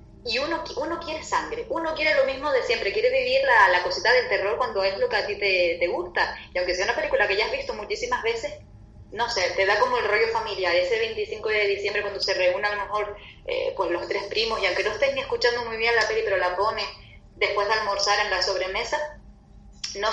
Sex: female